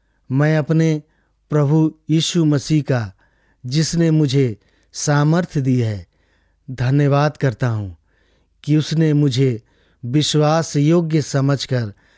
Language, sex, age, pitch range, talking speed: English, male, 50-69, 100-150 Hz, 100 wpm